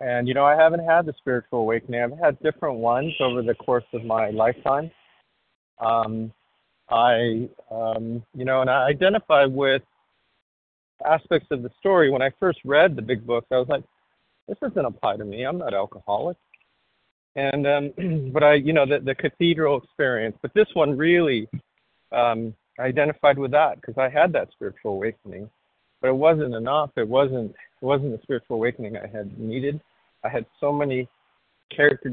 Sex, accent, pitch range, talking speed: male, American, 120-145 Hz, 170 wpm